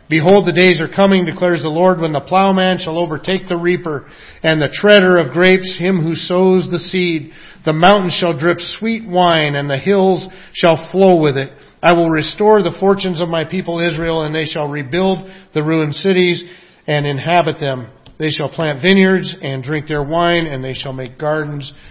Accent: American